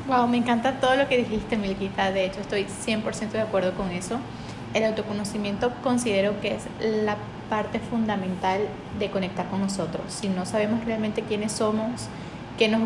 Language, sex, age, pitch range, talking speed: Spanish, female, 20-39, 205-240 Hz, 170 wpm